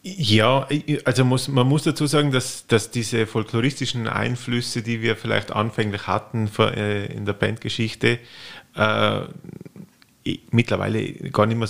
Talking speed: 140 wpm